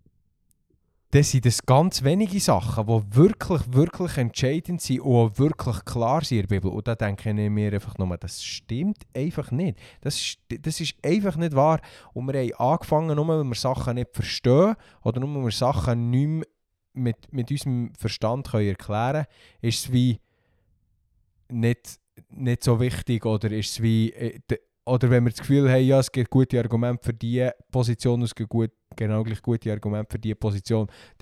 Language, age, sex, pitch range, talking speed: German, 20-39, male, 110-145 Hz, 185 wpm